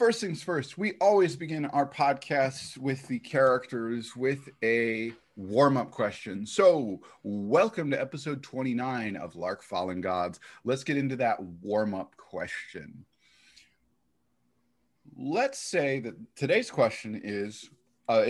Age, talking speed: 30-49, 120 wpm